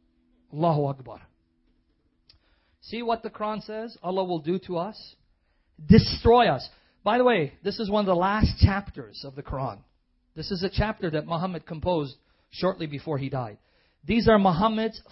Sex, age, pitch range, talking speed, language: male, 40-59, 135-215 Hz, 165 wpm, English